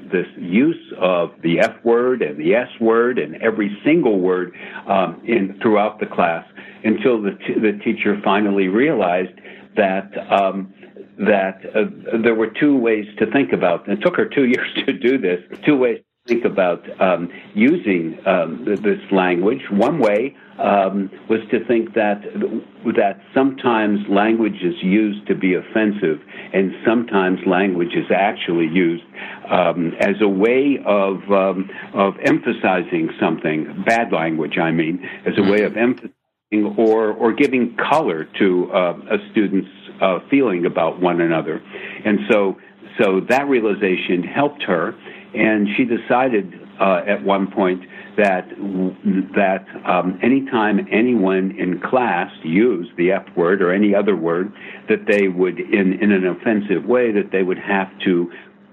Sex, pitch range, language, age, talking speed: male, 95-110 Hz, English, 60-79, 155 wpm